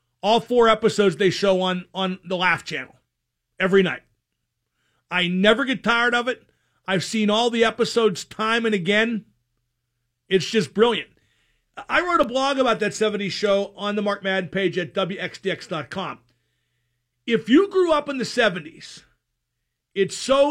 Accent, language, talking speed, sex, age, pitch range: American, English, 155 wpm, male, 40-59, 180-240 Hz